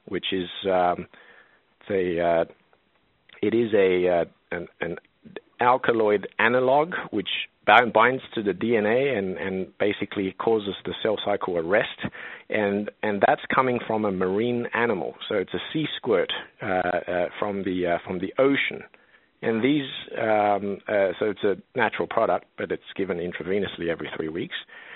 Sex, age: male, 50-69